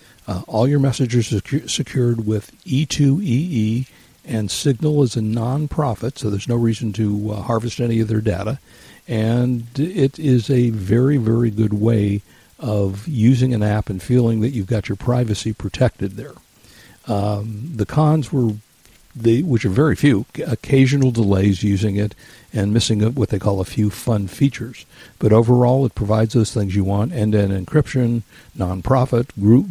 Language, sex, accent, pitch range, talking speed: English, male, American, 105-130 Hz, 160 wpm